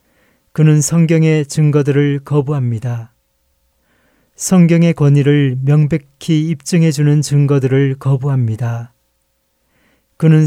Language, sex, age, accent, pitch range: Korean, male, 30-49, native, 130-160 Hz